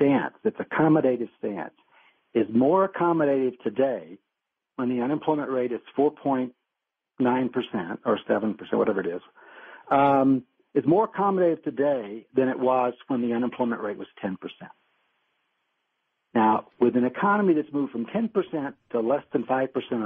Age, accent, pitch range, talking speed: 60-79, American, 120-165 Hz, 135 wpm